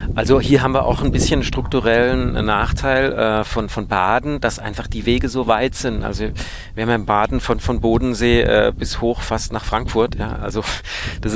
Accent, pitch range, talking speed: German, 95-115 Hz, 190 wpm